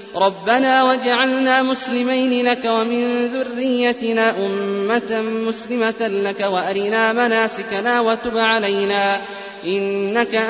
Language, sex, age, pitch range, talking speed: Arabic, male, 20-39, 200-245 Hz, 80 wpm